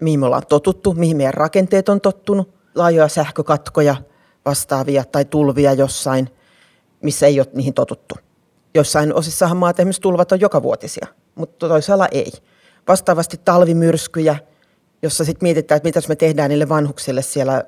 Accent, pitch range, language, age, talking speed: native, 140-175 Hz, Finnish, 40-59, 140 wpm